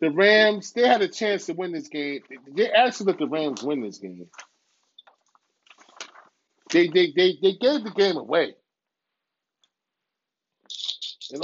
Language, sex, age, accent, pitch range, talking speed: English, male, 30-49, American, 170-230 Hz, 140 wpm